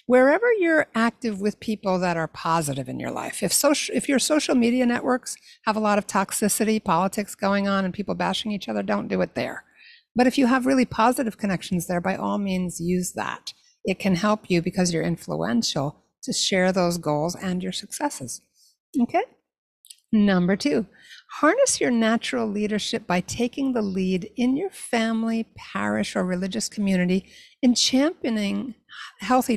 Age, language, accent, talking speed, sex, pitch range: 60-79, English, American, 170 wpm, female, 190-240 Hz